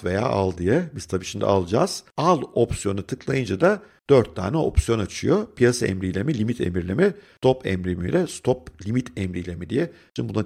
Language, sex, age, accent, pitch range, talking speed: Turkish, male, 50-69, native, 100-150 Hz, 160 wpm